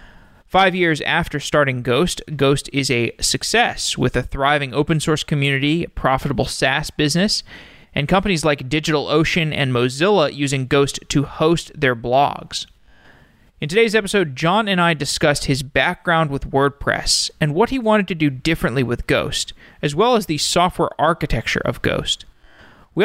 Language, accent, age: English, American, 30-49